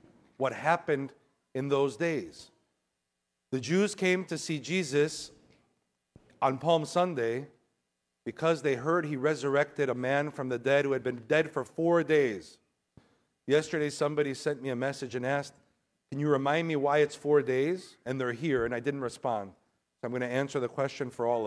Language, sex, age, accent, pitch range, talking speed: English, male, 50-69, American, 115-155 Hz, 175 wpm